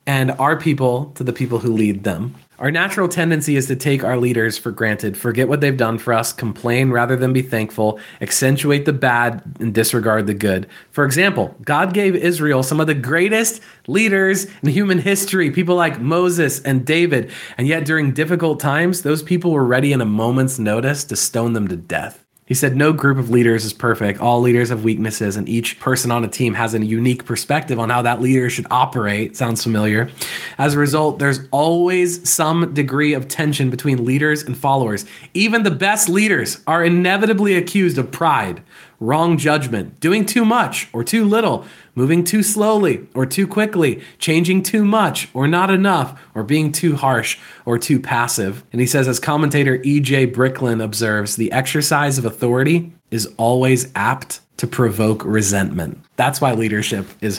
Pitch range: 115-170 Hz